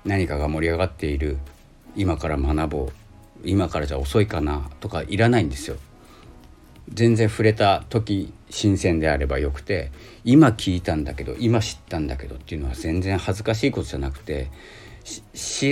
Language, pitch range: Japanese, 75-110 Hz